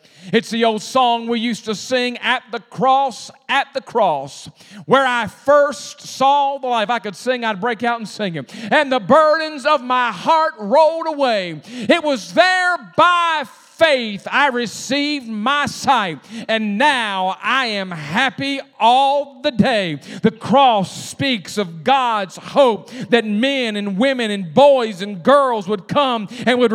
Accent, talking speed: American, 160 wpm